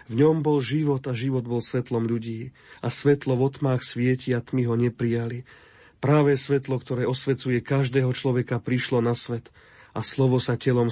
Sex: male